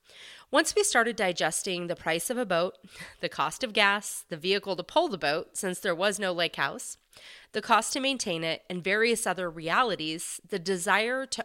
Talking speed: 195 wpm